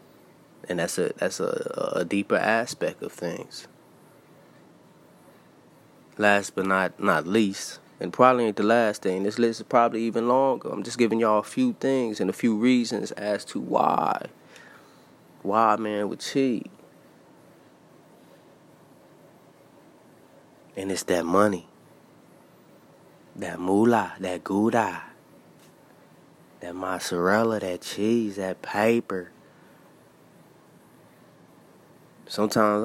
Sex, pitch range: male, 95-115 Hz